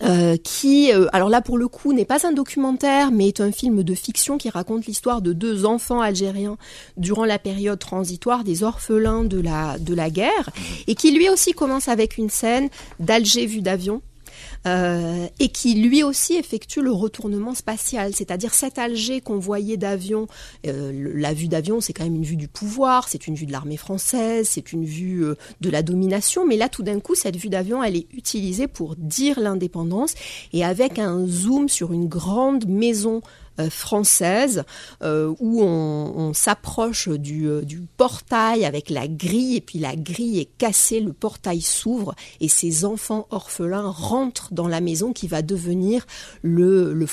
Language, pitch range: French, 175-235 Hz